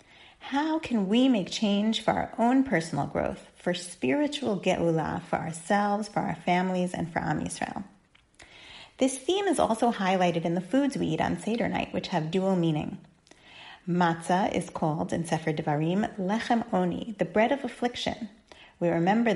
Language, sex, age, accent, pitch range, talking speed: English, female, 30-49, American, 170-235 Hz, 165 wpm